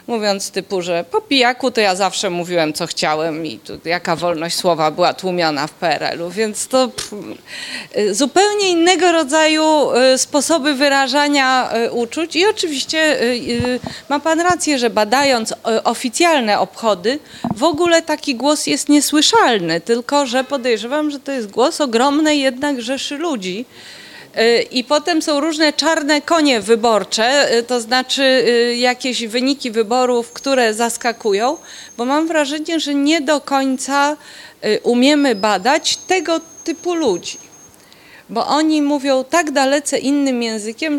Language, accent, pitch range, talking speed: Polish, native, 220-295 Hz, 125 wpm